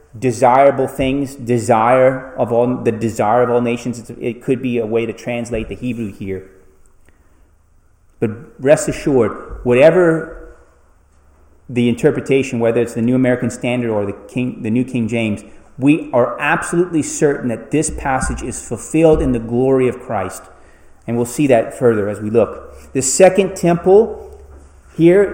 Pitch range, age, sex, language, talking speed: 110-150 Hz, 30-49, male, English, 145 wpm